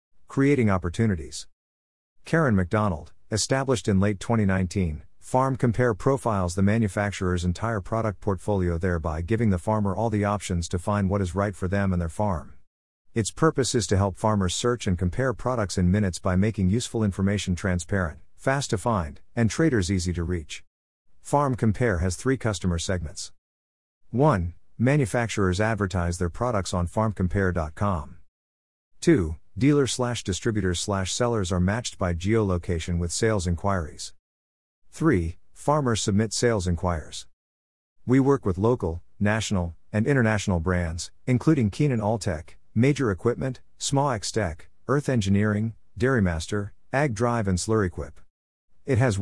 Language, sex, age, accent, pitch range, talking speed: English, male, 50-69, American, 85-115 Hz, 135 wpm